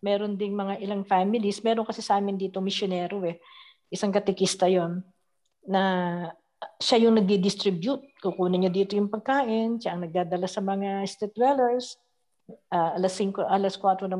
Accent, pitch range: native, 185-225 Hz